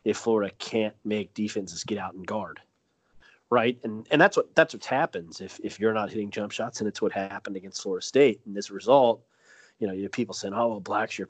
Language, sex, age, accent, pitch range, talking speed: English, male, 30-49, American, 95-115 Hz, 230 wpm